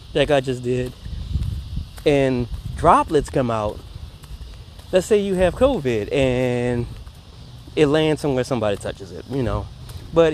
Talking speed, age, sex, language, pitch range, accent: 135 wpm, 30-49, male, English, 110-160 Hz, American